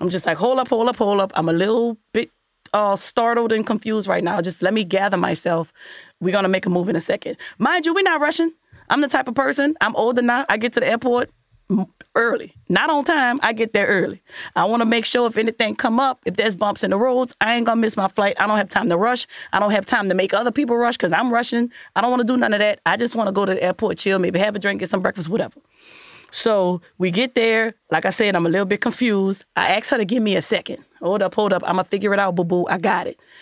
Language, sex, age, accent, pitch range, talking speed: English, female, 30-49, American, 200-280 Hz, 285 wpm